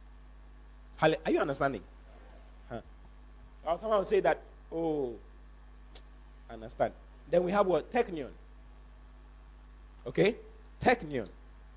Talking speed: 85 wpm